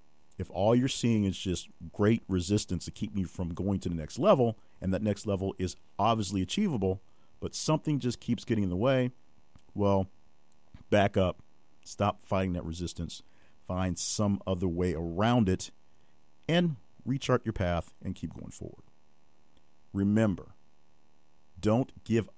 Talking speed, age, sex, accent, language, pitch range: 150 wpm, 50-69, male, American, English, 75-110 Hz